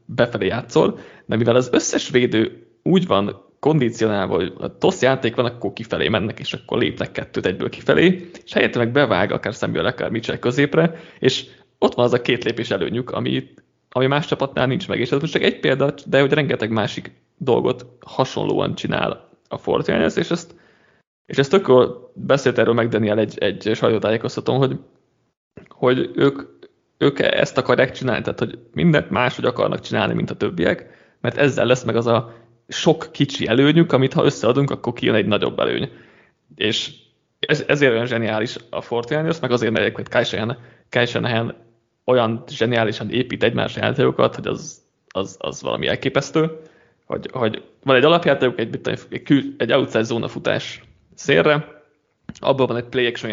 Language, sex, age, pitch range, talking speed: Hungarian, male, 20-39, 115-140 Hz, 160 wpm